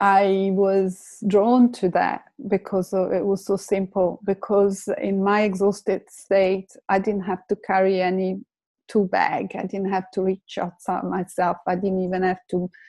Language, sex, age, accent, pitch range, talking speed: English, female, 30-49, Italian, 185-210 Hz, 165 wpm